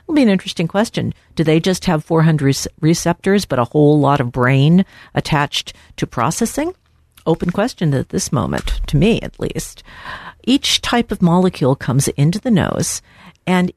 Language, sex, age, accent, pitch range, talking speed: English, female, 50-69, American, 135-180 Hz, 165 wpm